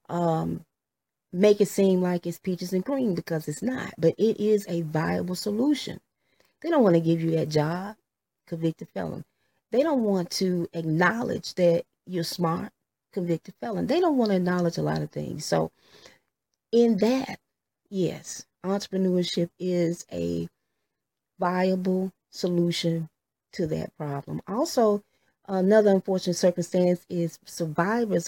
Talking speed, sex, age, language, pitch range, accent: 140 wpm, female, 30-49, English, 170-210 Hz, American